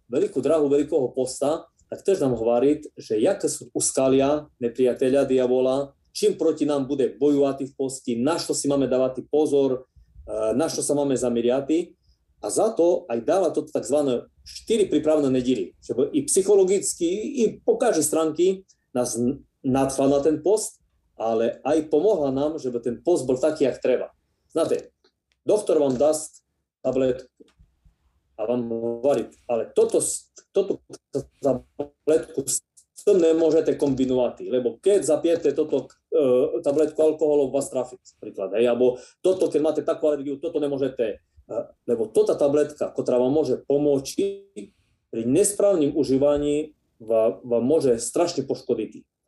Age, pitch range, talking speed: 30-49, 130-180 Hz, 140 wpm